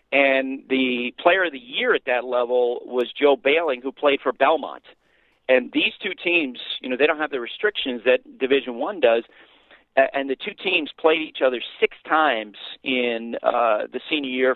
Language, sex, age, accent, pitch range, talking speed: English, male, 40-59, American, 120-140 Hz, 185 wpm